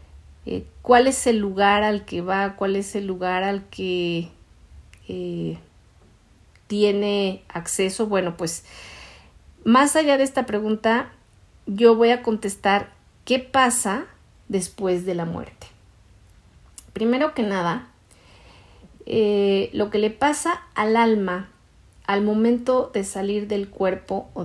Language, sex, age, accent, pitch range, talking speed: Spanish, female, 40-59, Mexican, 180-235 Hz, 125 wpm